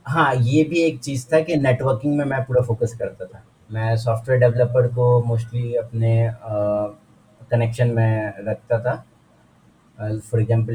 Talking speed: 150 wpm